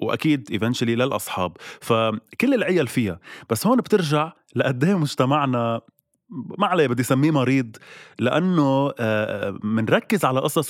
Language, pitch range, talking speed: Arabic, 115-150 Hz, 120 wpm